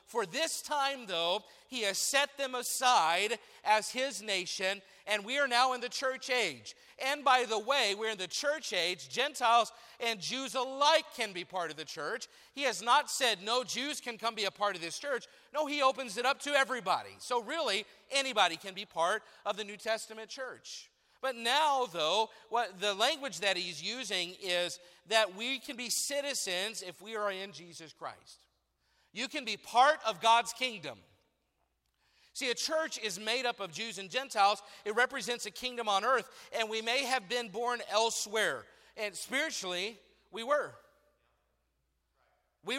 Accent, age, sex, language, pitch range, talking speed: American, 40-59, male, English, 205-265 Hz, 180 wpm